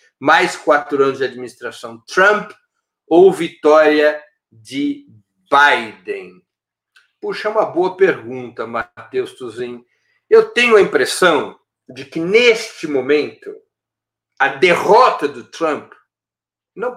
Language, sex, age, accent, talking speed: Portuguese, male, 50-69, Brazilian, 105 wpm